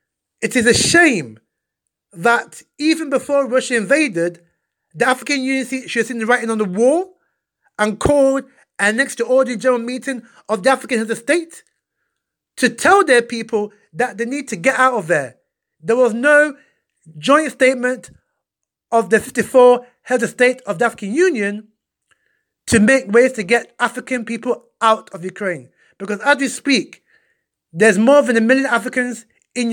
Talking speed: 165 wpm